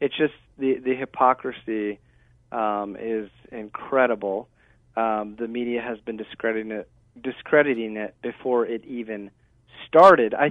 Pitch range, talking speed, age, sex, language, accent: 115-140 Hz, 125 wpm, 40-59, male, English, American